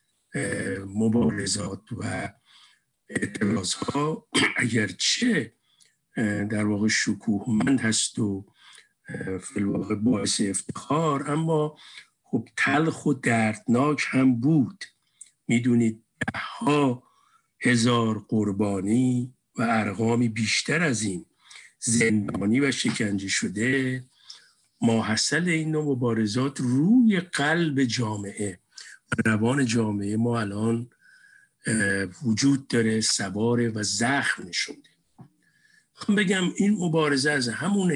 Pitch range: 110-150 Hz